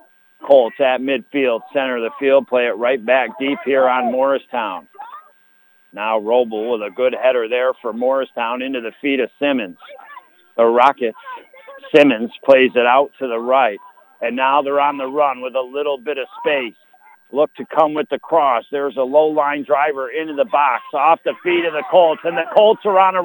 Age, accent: 50-69, American